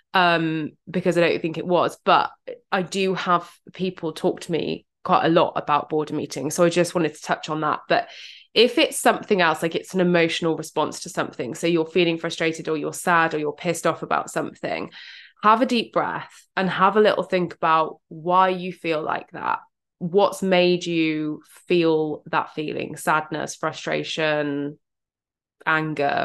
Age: 20-39